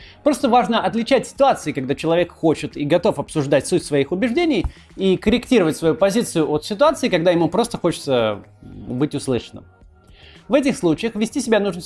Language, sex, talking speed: Russian, male, 155 wpm